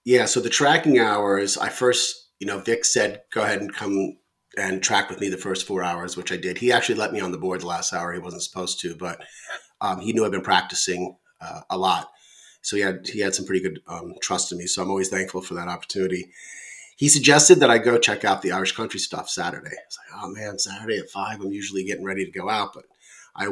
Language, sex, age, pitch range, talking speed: English, male, 30-49, 95-120 Hz, 250 wpm